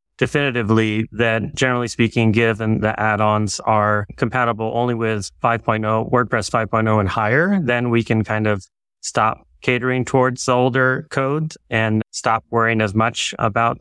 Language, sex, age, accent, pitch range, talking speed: English, male, 30-49, American, 110-125 Hz, 140 wpm